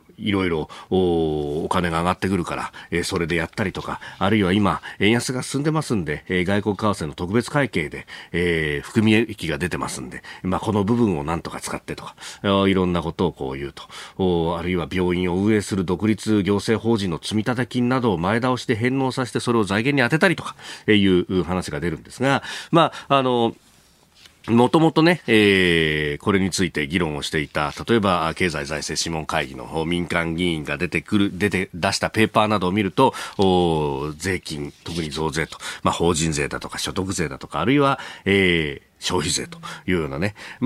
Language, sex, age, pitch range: Japanese, male, 40-59, 85-125 Hz